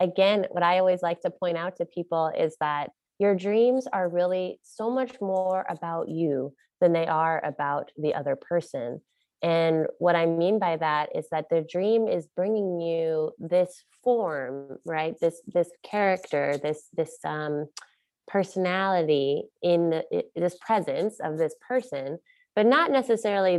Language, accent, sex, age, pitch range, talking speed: English, American, female, 20-39, 155-185 Hz, 155 wpm